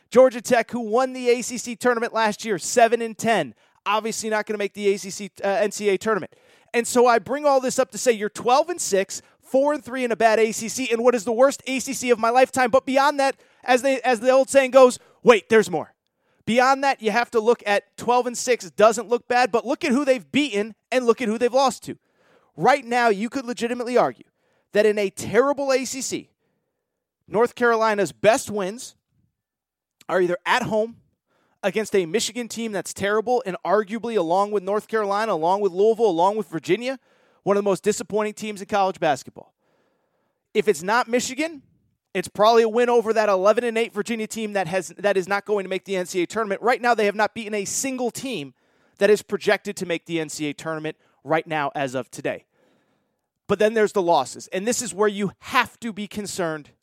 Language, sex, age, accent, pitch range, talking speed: English, male, 30-49, American, 200-245 Hz, 200 wpm